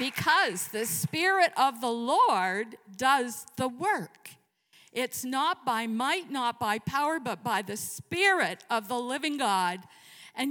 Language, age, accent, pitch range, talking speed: English, 50-69, American, 195-260 Hz, 145 wpm